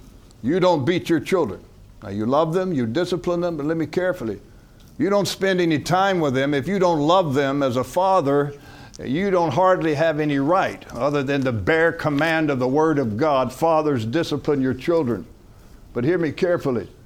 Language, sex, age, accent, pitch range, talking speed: English, male, 60-79, American, 130-165 Hz, 195 wpm